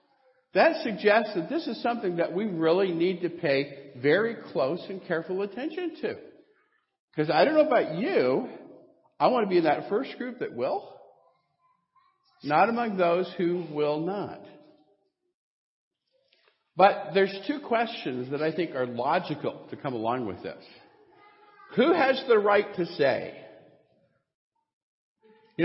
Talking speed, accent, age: 145 wpm, American, 50-69